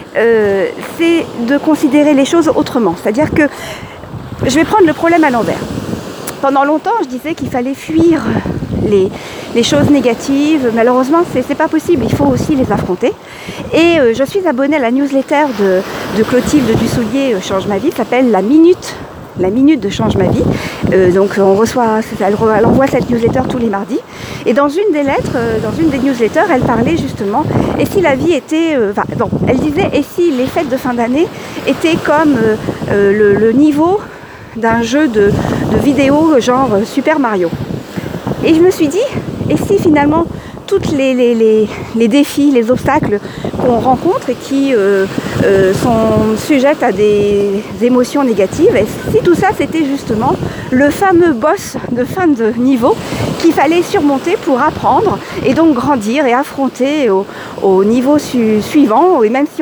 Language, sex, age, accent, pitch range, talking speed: French, female, 50-69, French, 230-315 Hz, 175 wpm